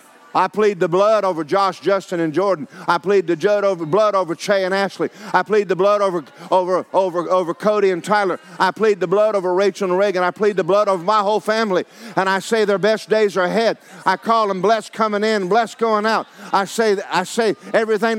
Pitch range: 160-205 Hz